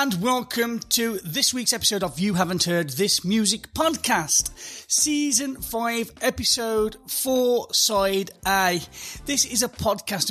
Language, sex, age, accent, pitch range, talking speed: English, male, 30-49, British, 180-215 Hz, 135 wpm